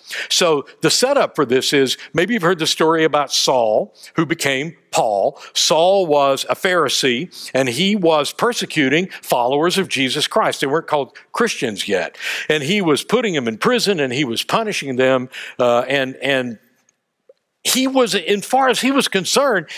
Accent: American